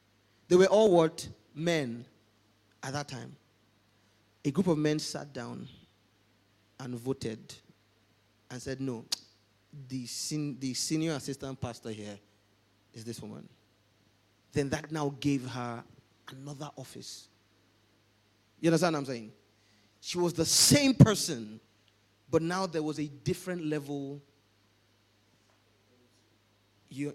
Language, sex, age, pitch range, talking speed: English, male, 30-49, 110-170 Hz, 120 wpm